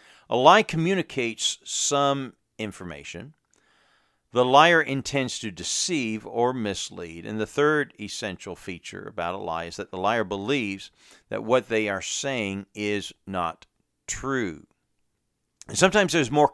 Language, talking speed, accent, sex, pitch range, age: English, 130 wpm, American, male, 100-130 Hz, 50-69